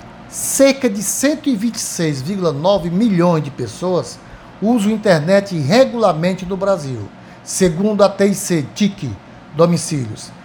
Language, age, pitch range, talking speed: Portuguese, 60-79, 155-200 Hz, 100 wpm